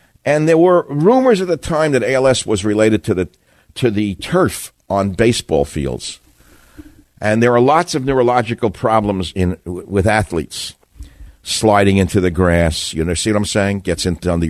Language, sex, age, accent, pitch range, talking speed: English, male, 60-79, American, 90-130 Hz, 180 wpm